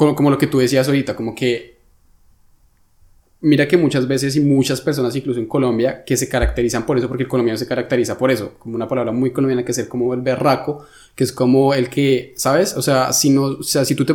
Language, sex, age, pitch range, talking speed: Spanish, male, 20-39, 125-145 Hz, 240 wpm